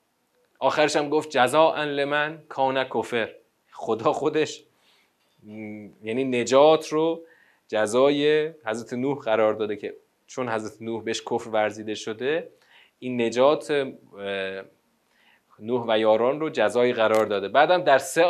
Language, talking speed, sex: Persian, 125 wpm, male